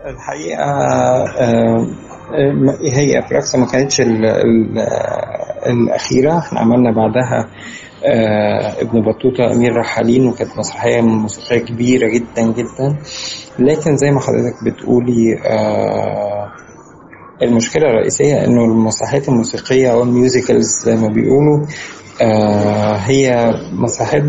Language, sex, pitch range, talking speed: Arabic, male, 115-130 Hz, 95 wpm